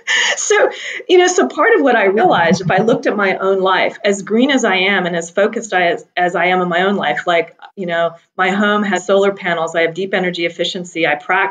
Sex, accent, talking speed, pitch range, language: female, American, 245 wpm, 175-230 Hz, English